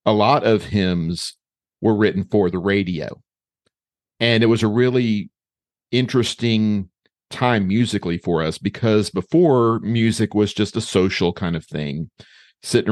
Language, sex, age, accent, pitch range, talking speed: English, male, 50-69, American, 90-110 Hz, 140 wpm